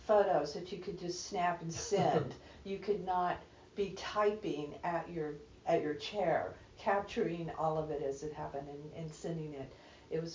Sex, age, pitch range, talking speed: female, 50-69, 155-200 Hz, 180 wpm